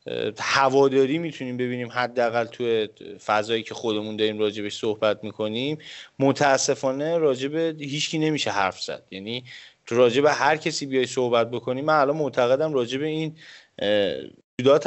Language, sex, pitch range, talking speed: Persian, male, 125-155 Hz, 130 wpm